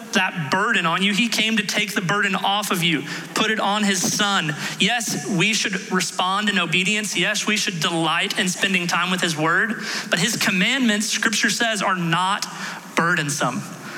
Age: 30-49